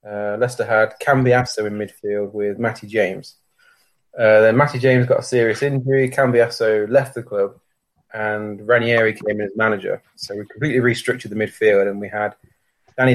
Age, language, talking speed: 30-49, English, 170 wpm